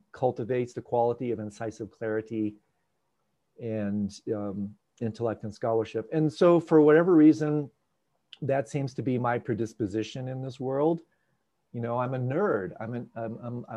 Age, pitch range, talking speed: 40-59, 105-140 Hz, 140 wpm